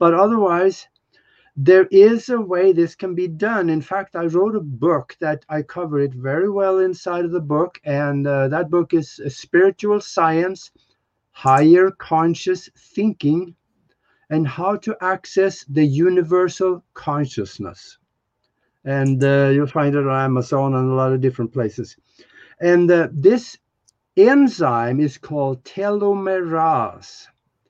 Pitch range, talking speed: 150-190 Hz, 135 wpm